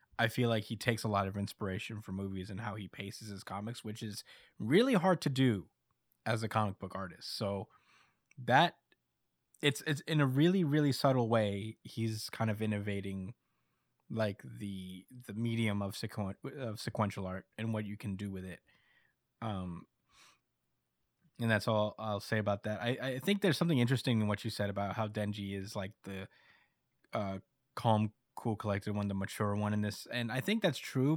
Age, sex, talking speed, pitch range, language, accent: 20-39, male, 185 wpm, 100-125 Hz, English, American